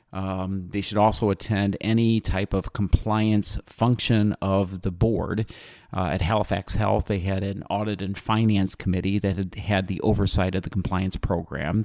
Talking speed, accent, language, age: 165 wpm, American, English, 40-59